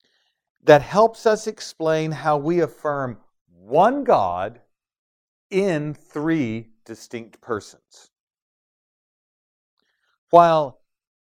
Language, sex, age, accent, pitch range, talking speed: English, male, 40-59, American, 125-175 Hz, 75 wpm